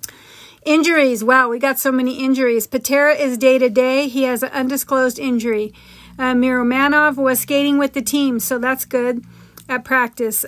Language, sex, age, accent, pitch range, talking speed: English, female, 40-59, American, 255-285 Hz, 165 wpm